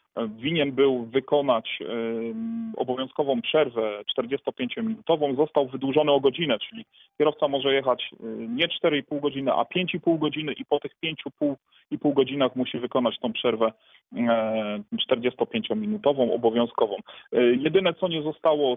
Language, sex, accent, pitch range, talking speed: Polish, male, native, 115-155 Hz, 110 wpm